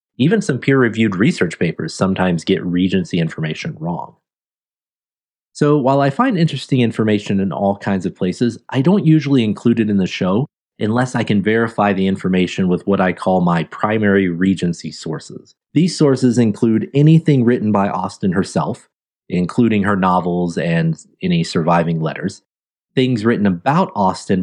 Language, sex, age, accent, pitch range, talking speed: English, male, 30-49, American, 90-125 Hz, 150 wpm